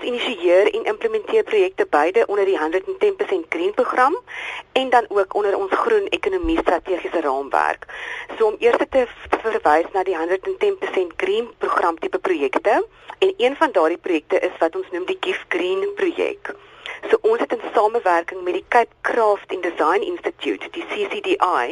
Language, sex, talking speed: Dutch, female, 155 wpm